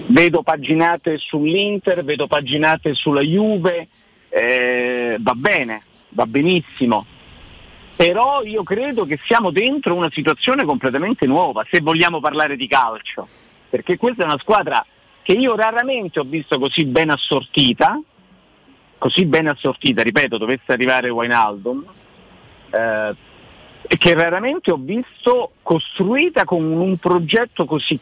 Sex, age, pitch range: male, 50-69, 135-195 Hz